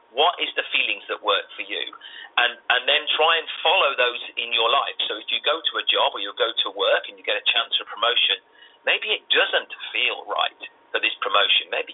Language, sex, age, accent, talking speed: English, male, 40-59, British, 235 wpm